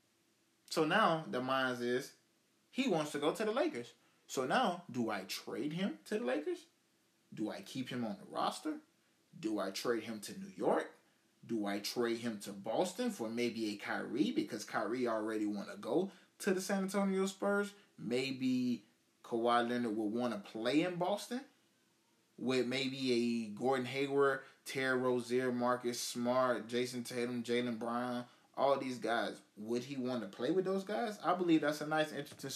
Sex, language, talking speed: male, English, 175 wpm